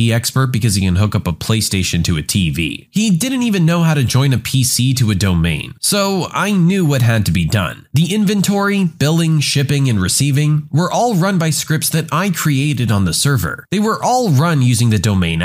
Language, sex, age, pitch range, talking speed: English, male, 30-49, 110-175 Hz, 215 wpm